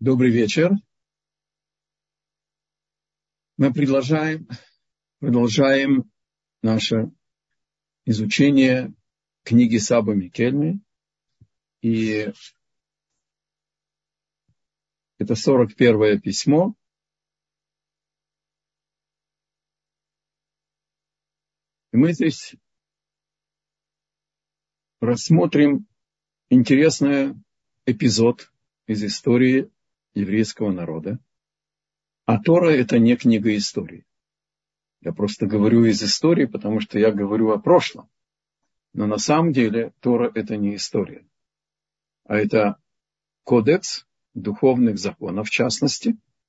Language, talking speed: Russian, 70 wpm